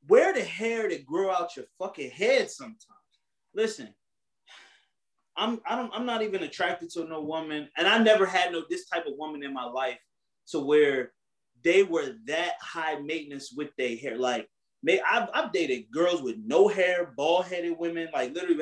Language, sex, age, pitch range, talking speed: English, male, 30-49, 150-220 Hz, 180 wpm